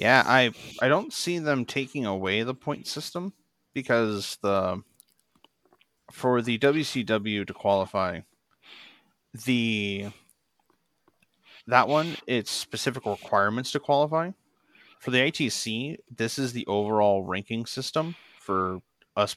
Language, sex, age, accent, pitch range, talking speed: English, male, 30-49, American, 100-120 Hz, 115 wpm